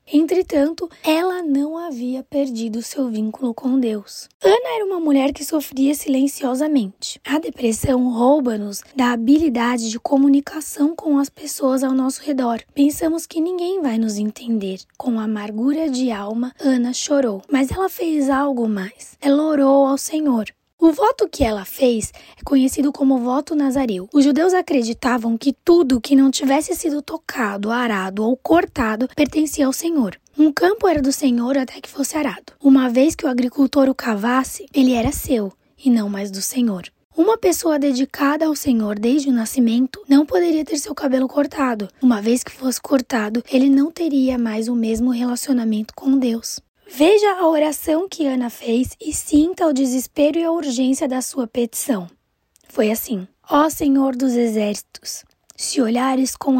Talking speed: 165 wpm